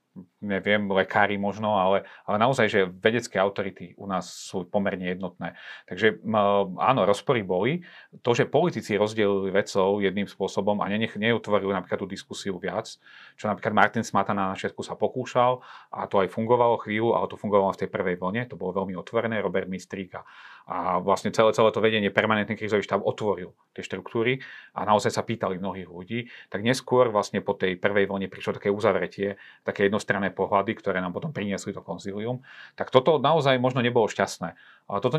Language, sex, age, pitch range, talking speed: Slovak, male, 40-59, 95-120 Hz, 180 wpm